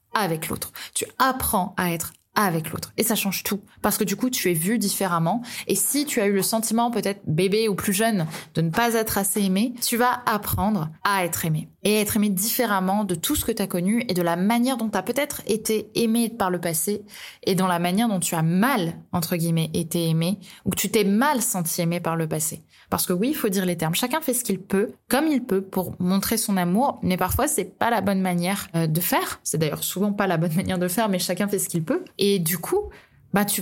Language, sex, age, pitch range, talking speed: French, female, 20-39, 180-225 Hz, 245 wpm